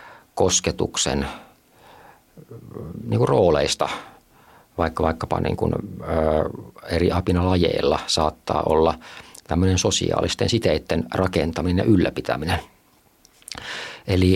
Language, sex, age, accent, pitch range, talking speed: Finnish, male, 50-69, native, 85-105 Hz, 85 wpm